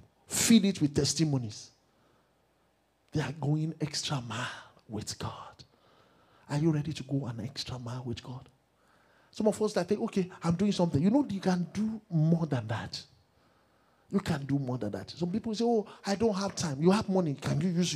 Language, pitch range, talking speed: English, 130-180 Hz, 190 wpm